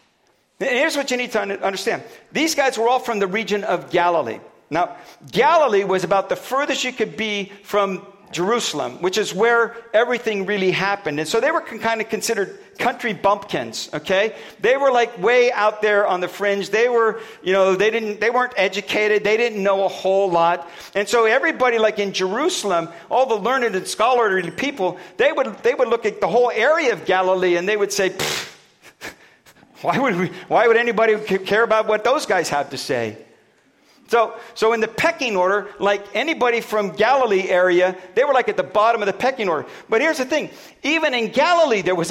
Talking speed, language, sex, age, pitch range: 200 wpm, English, male, 50-69, 195-245 Hz